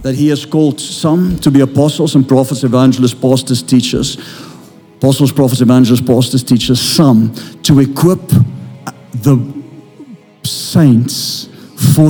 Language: English